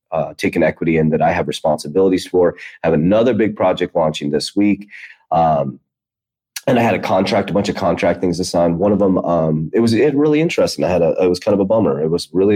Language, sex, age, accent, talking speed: English, male, 30-49, American, 250 wpm